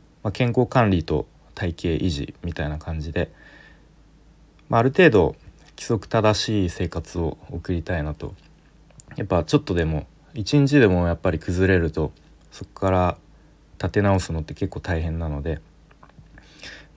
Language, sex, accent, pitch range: Japanese, male, native, 85-110 Hz